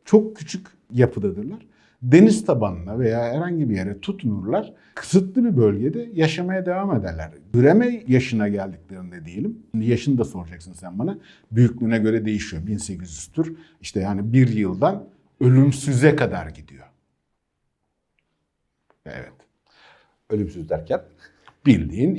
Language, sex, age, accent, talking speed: Turkish, male, 50-69, native, 110 wpm